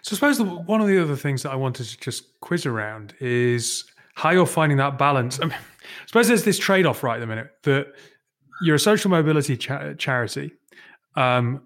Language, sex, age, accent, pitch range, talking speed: English, male, 30-49, British, 125-160 Hz, 195 wpm